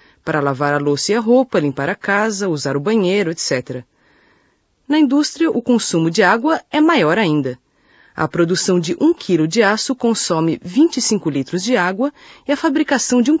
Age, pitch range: 40-59, 160-260 Hz